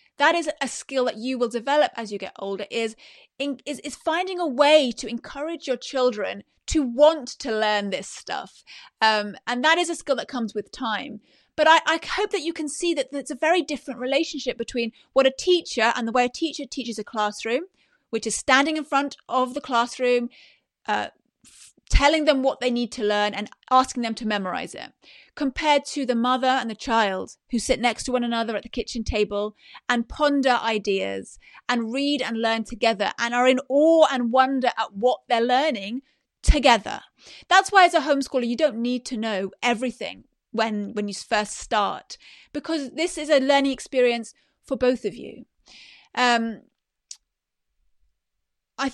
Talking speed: 185 wpm